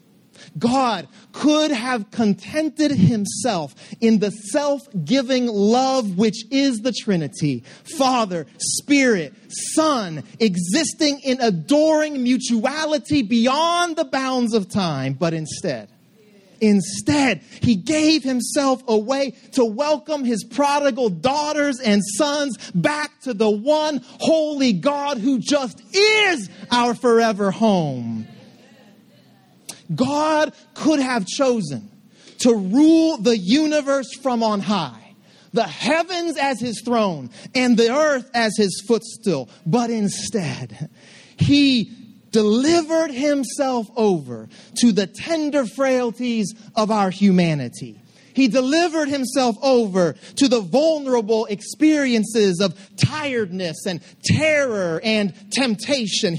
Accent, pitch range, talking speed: American, 205-285 Hz, 105 wpm